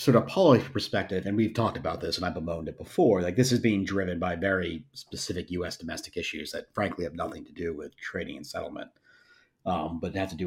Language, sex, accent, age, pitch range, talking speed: English, male, American, 30-49, 90-115 Hz, 235 wpm